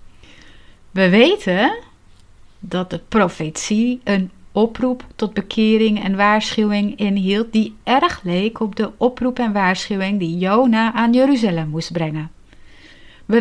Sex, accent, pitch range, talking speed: female, Dutch, 175-235 Hz, 120 wpm